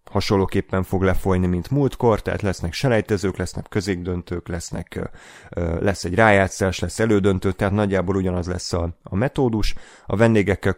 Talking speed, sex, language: 135 wpm, male, Hungarian